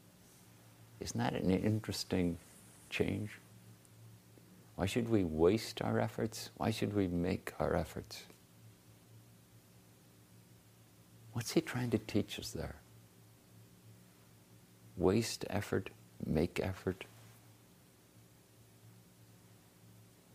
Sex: male